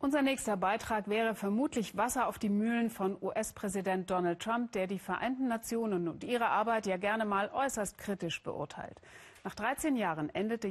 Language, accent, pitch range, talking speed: German, German, 190-235 Hz, 170 wpm